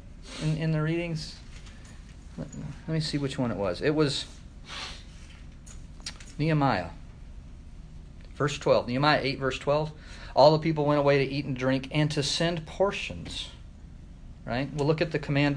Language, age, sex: English, 40-59, male